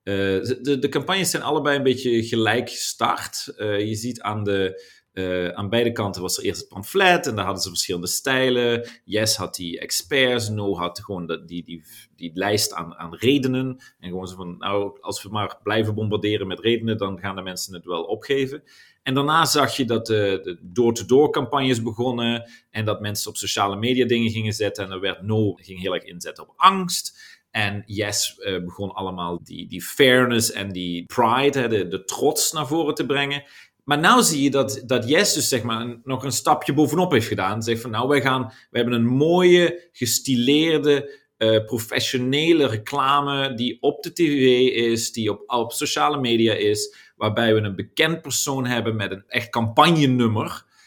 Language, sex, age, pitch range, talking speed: Dutch, male, 30-49, 105-140 Hz, 190 wpm